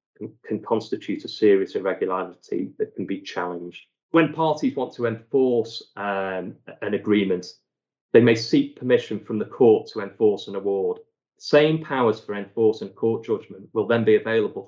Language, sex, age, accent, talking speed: English, male, 30-49, British, 155 wpm